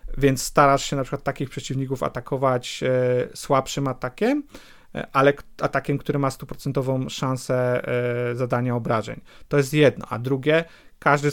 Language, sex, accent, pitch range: Polish, male, native, 125-145 Hz